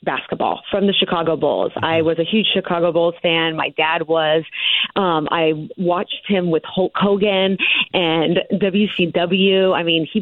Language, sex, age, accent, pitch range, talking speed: English, female, 30-49, American, 170-215 Hz, 160 wpm